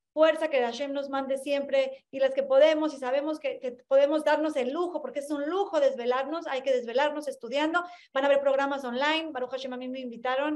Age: 30-49